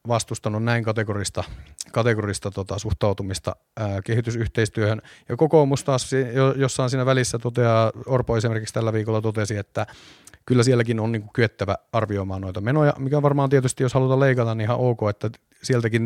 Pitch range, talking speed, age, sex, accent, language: 105-130 Hz, 155 wpm, 30-49, male, native, Finnish